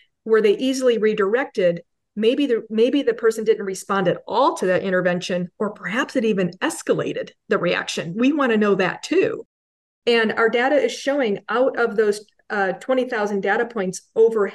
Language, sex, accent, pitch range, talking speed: English, female, American, 190-235 Hz, 175 wpm